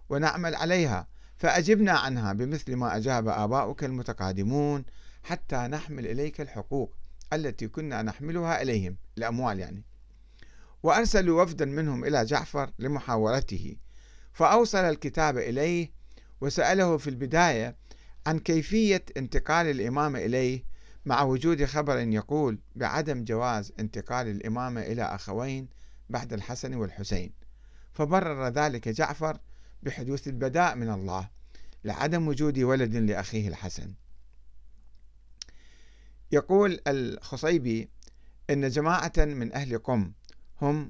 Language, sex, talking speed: Arabic, male, 100 wpm